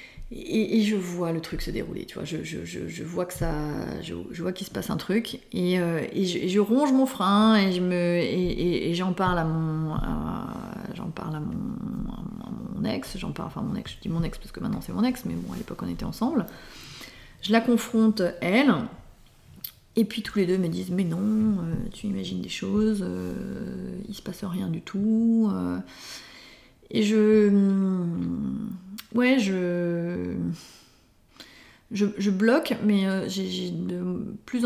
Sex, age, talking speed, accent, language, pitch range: female, 30-49, 190 wpm, French, French, 175-220 Hz